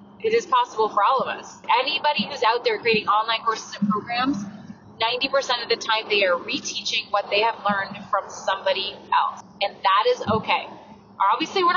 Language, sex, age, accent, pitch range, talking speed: English, female, 20-39, American, 210-310 Hz, 180 wpm